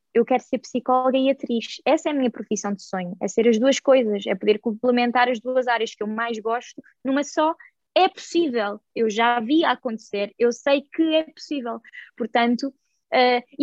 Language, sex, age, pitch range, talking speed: Portuguese, female, 20-39, 235-300 Hz, 190 wpm